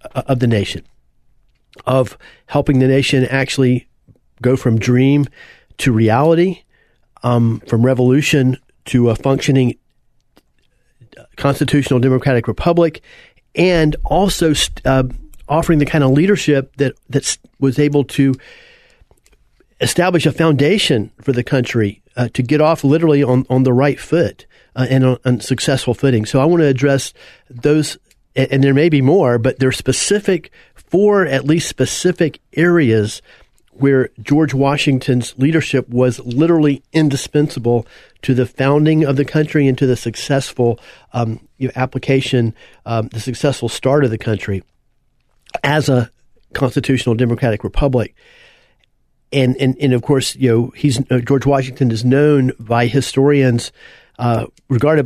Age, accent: 40-59, American